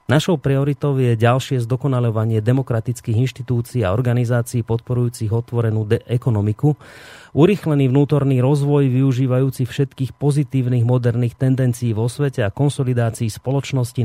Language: Slovak